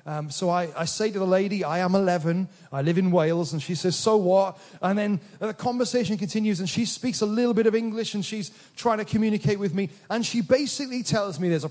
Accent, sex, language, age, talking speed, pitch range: British, male, English, 30-49, 245 wpm, 170-245 Hz